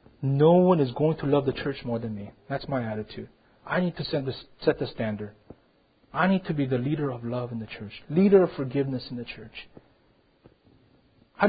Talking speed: 210 wpm